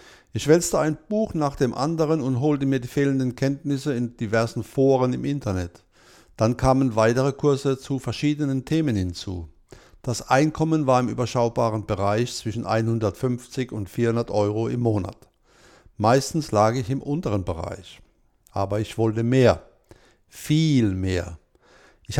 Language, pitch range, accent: German, 110-145 Hz, German